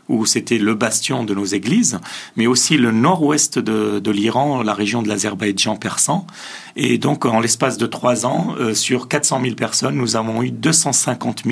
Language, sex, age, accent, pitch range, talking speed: French, male, 40-59, French, 115-140 Hz, 180 wpm